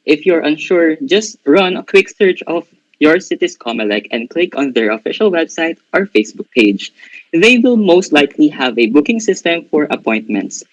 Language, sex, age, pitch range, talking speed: Filipino, female, 20-39, 130-215 Hz, 175 wpm